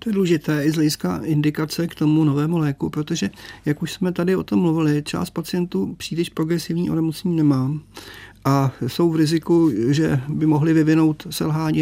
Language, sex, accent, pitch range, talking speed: Czech, male, native, 140-155 Hz, 170 wpm